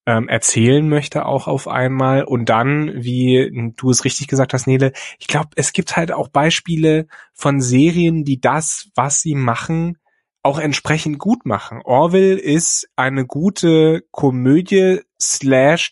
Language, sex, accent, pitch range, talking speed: German, male, German, 135-170 Hz, 145 wpm